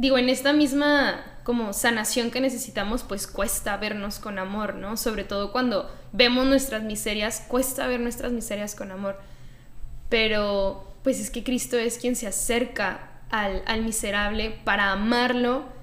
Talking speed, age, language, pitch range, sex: 150 wpm, 10-29, Spanish, 205-250 Hz, female